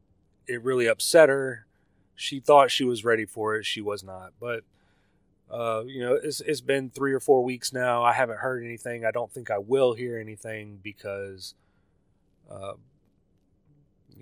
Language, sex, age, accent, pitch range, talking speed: English, male, 30-49, American, 95-130 Hz, 165 wpm